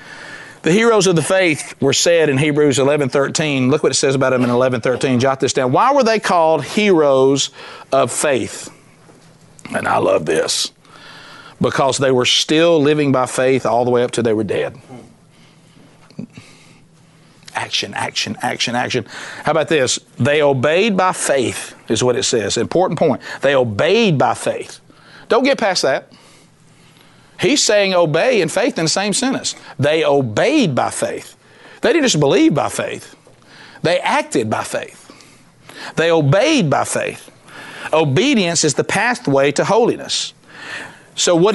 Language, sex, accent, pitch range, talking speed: English, male, American, 140-175 Hz, 155 wpm